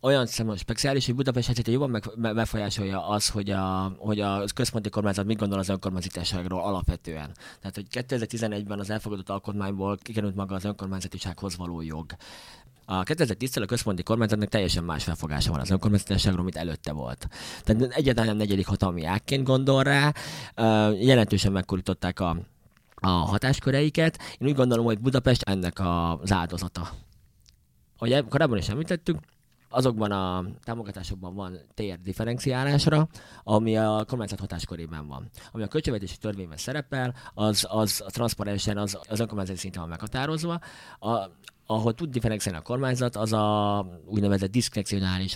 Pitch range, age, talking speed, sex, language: 95-120 Hz, 20-39, 135 wpm, male, Hungarian